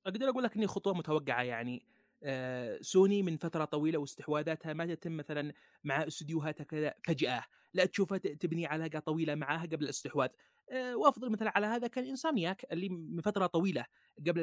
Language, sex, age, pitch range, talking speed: Arabic, male, 30-49, 150-195 Hz, 160 wpm